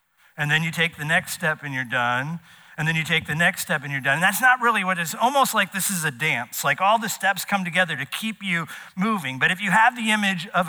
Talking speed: 280 wpm